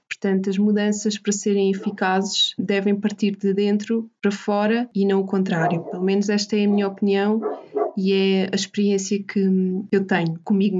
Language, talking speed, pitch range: Portuguese, 170 wpm, 190-210 Hz